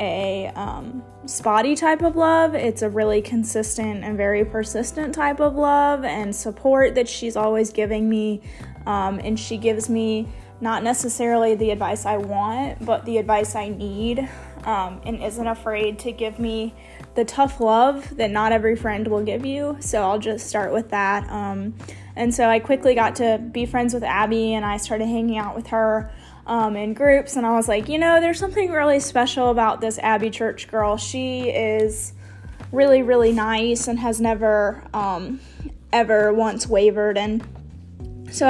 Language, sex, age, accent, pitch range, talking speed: English, female, 10-29, American, 210-235 Hz, 175 wpm